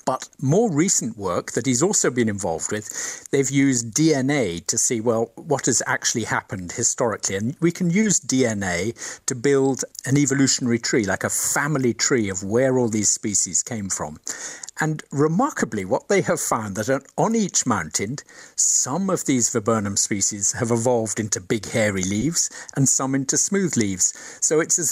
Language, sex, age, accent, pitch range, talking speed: English, male, 50-69, British, 115-140 Hz, 175 wpm